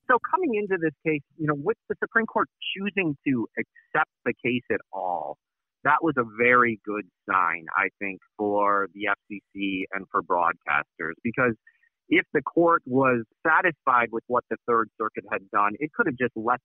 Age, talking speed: 30-49, 180 wpm